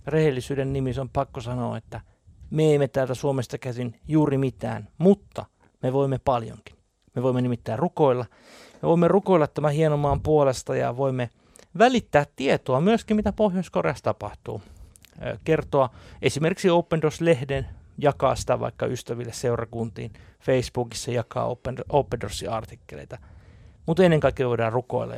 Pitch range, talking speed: 110-140 Hz, 120 wpm